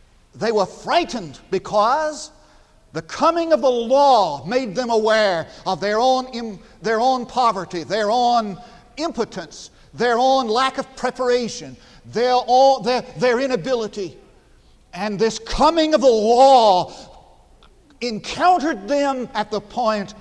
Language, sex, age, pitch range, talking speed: English, male, 50-69, 215-265 Hz, 120 wpm